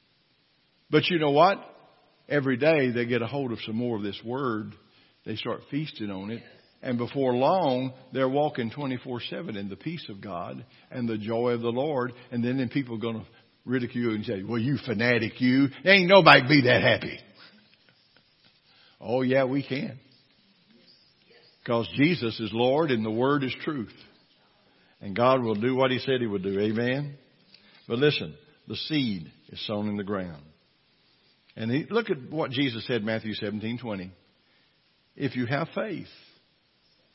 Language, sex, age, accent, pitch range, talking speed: English, male, 60-79, American, 115-150 Hz, 170 wpm